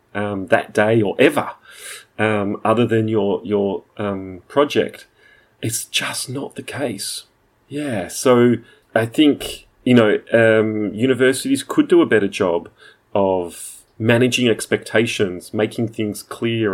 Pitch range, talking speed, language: 100-120 Hz, 130 wpm, English